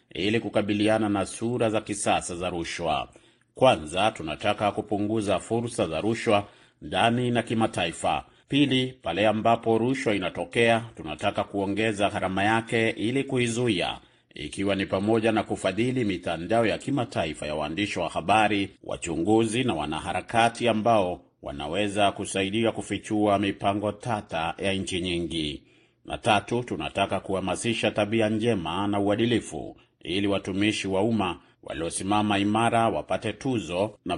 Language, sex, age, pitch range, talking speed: Swahili, male, 40-59, 100-115 Hz, 120 wpm